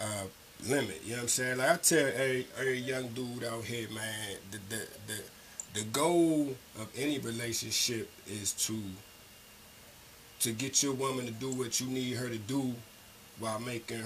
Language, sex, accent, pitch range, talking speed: English, male, American, 110-130 Hz, 175 wpm